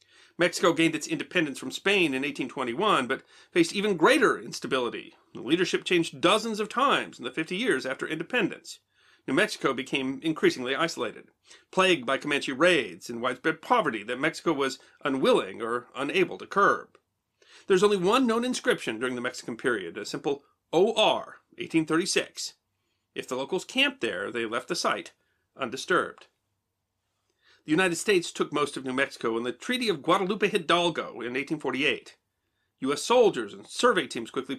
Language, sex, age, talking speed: English, male, 40-59, 155 wpm